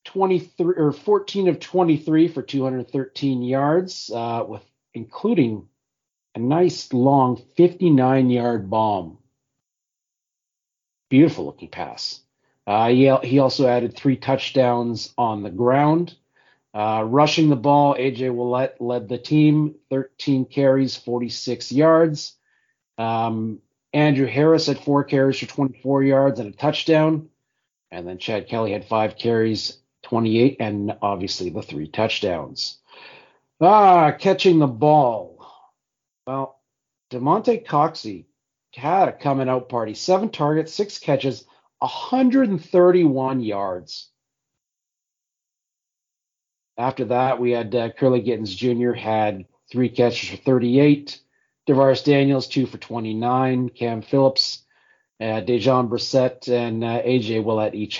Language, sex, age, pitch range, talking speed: English, male, 40-59, 115-145 Hz, 115 wpm